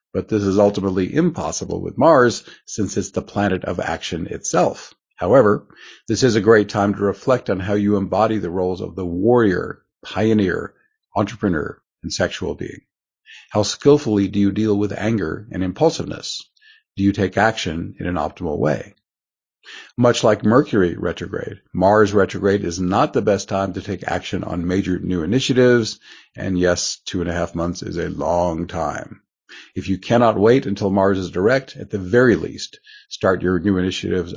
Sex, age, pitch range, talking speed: male, 50-69, 95-110 Hz, 170 wpm